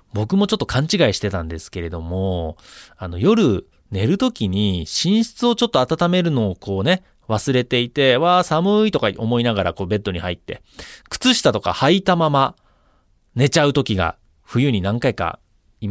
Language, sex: Japanese, male